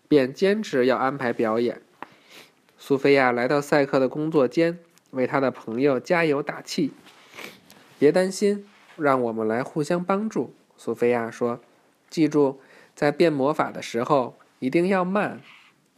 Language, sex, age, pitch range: Chinese, male, 20-39, 125-160 Hz